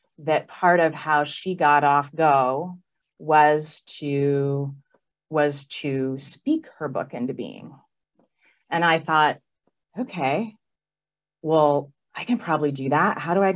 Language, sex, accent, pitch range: English, female, American, 130-150 Hz